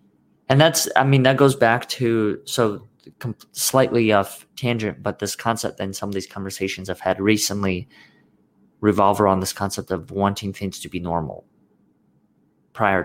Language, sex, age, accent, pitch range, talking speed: English, male, 30-49, American, 95-115 Hz, 155 wpm